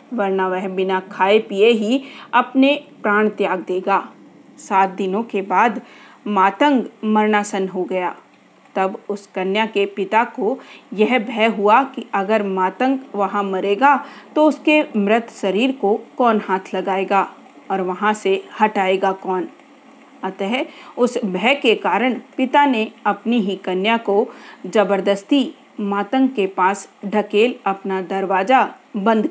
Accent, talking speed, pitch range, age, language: native, 130 wpm, 195-250 Hz, 40-59, Hindi